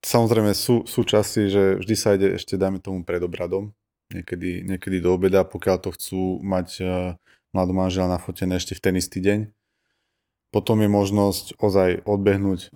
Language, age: Slovak, 20-39